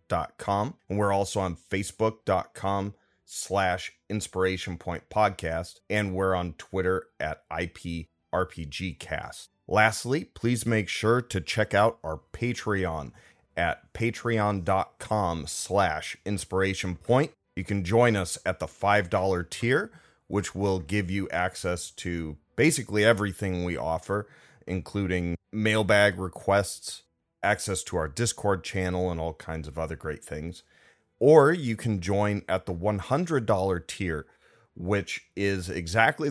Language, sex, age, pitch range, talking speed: English, male, 30-49, 85-105 Hz, 125 wpm